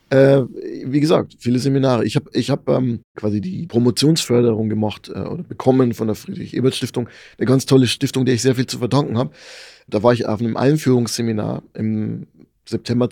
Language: German